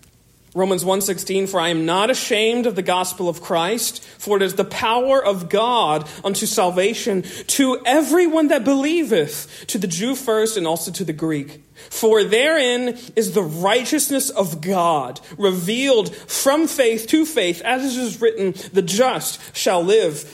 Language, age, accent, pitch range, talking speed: English, 40-59, American, 175-250 Hz, 160 wpm